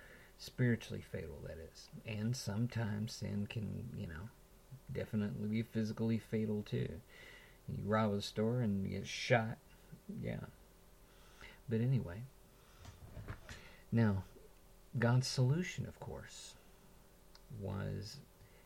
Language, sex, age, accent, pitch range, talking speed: English, male, 50-69, American, 100-120 Hz, 100 wpm